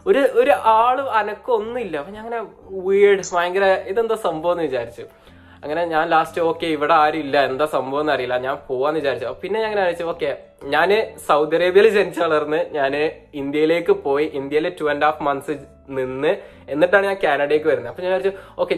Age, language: 20-39, Malayalam